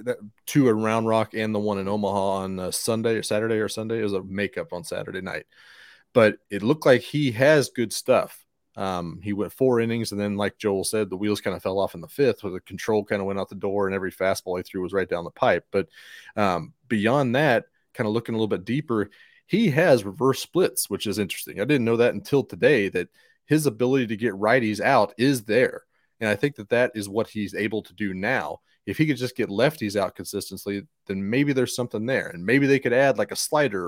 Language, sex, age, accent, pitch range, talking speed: English, male, 30-49, American, 100-130 Hz, 235 wpm